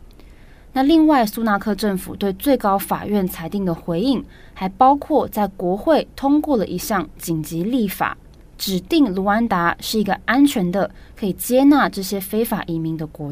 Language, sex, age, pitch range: Chinese, female, 20-39, 170-220 Hz